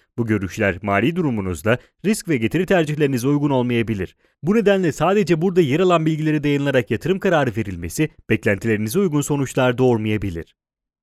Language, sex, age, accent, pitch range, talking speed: Italian, male, 30-49, Turkish, 115-165 Hz, 135 wpm